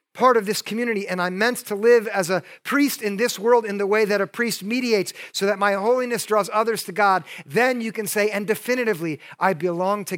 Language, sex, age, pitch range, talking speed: English, male, 50-69, 165-210 Hz, 230 wpm